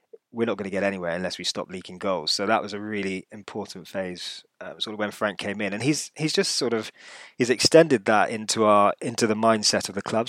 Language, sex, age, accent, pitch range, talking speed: English, male, 20-39, British, 95-120 Hz, 245 wpm